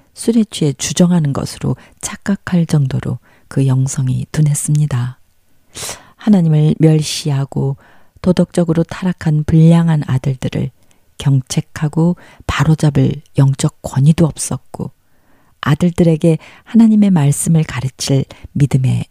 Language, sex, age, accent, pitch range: Korean, female, 40-59, native, 130-165 Hz